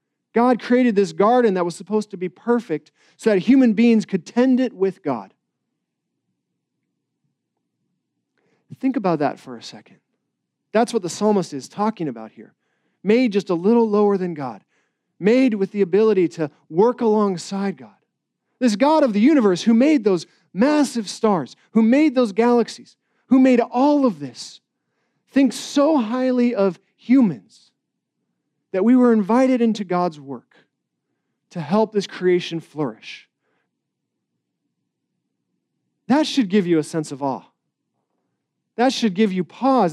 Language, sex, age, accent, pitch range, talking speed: English, male, 40-59, American, 190-245 Hz, 145 wpm